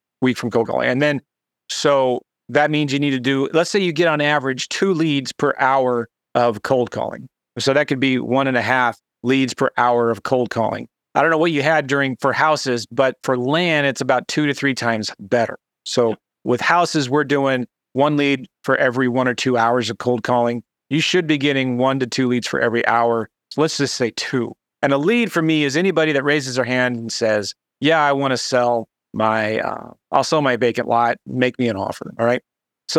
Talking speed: 220 wpm